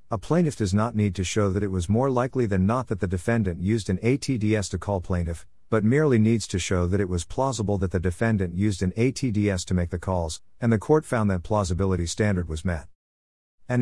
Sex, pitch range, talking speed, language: male, 90-115 Hz, 225 wpm, English